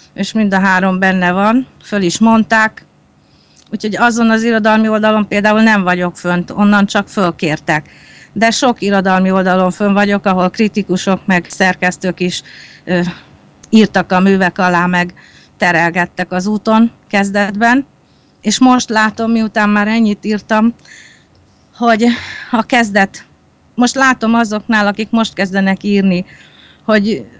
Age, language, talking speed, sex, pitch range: 30-49, Hungarian, 130 wpm, female, 190-225 Hz